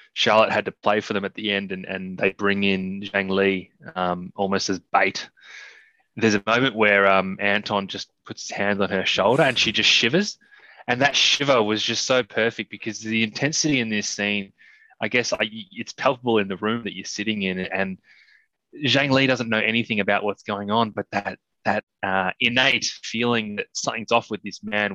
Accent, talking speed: Australian, 200 wpm